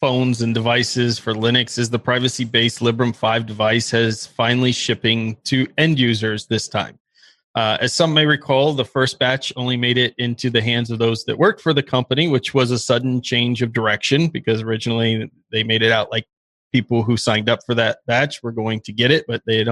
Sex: male